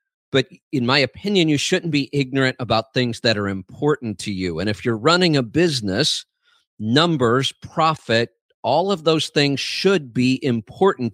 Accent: American